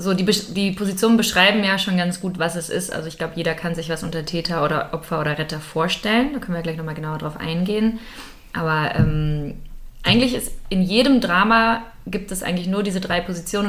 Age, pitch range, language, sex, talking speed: 20-39, 155-185 Hz, German, female, 215 wpm